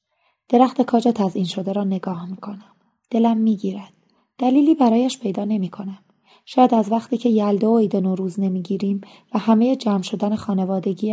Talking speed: 160 wpm